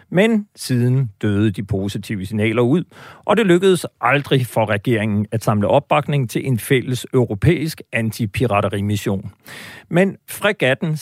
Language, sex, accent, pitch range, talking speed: Danish, male, native, 105-145 Hz, 125 wpm